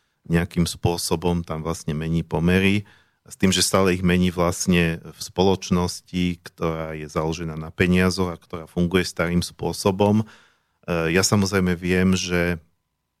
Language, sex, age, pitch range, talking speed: Slovak, male, 40-59, 85-95 Hz, 130 wpm